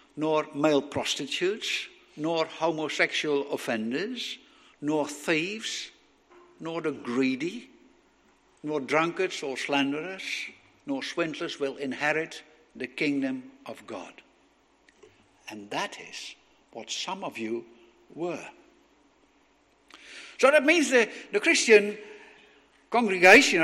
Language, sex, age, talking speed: English, male, 60-79, 95 wpm